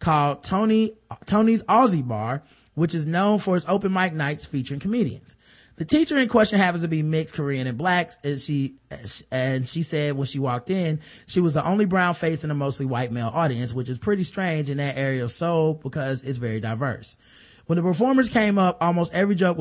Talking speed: 210 wpm